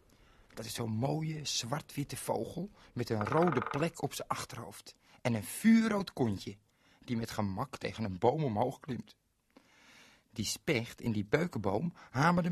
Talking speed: 150 wpm